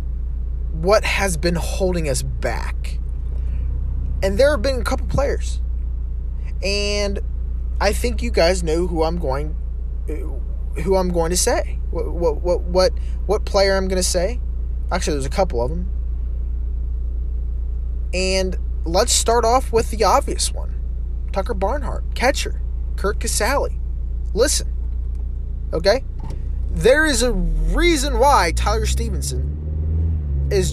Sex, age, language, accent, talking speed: male, 20-39, English, American, 130 wpm